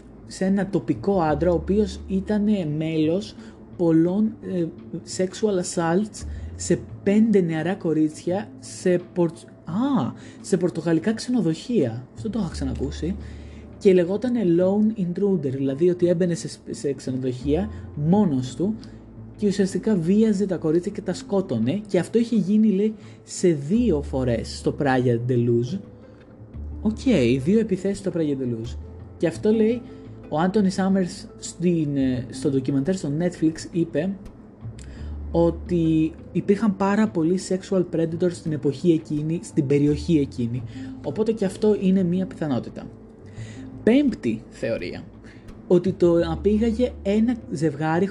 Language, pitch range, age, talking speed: Greek, 130-195 Hz, 20-39, 125 wpm